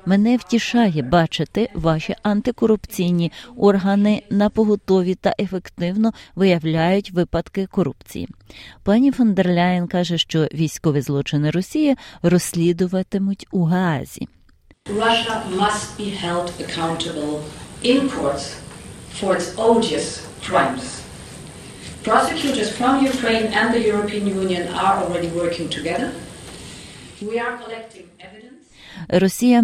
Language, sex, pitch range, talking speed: Ukrainian, female, 165-200 Hz, 75 wpm